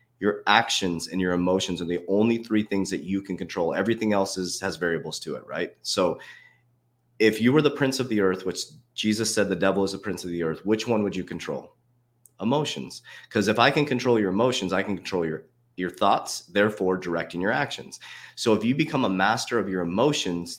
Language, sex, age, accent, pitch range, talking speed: English, male, 30-49, American, 95-120 Hz, 215 wpm